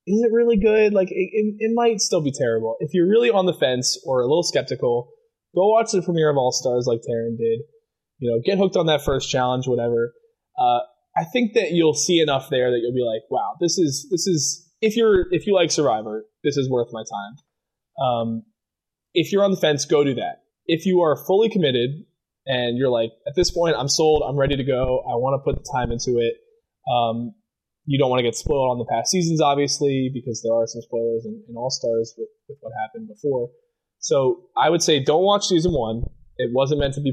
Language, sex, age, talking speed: English, male, 20-39, 230 wpm